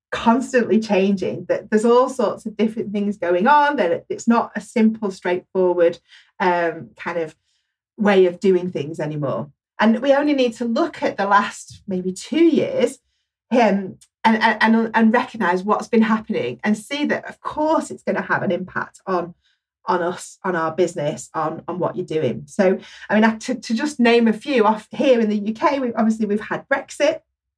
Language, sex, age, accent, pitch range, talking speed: English, female, 30-49, British, 185-240 Hz, 190 wpm